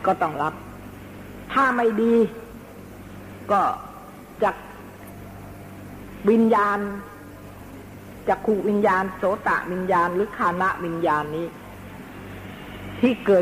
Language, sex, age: Thai, female, 60-79